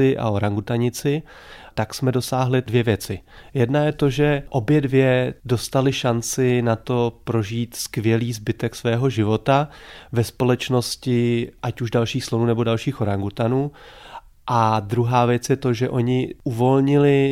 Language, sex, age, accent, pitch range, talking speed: Czech, male, 30-49, native, 115-130 Hz, 135 wpm